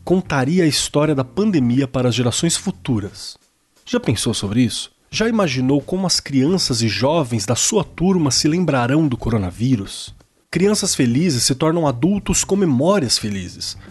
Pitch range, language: 115-170 Hz, Portuguese